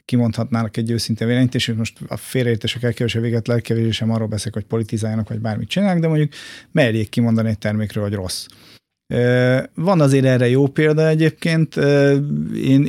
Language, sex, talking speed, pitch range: Hungarian, male, 160 wpm, 115-135 Hz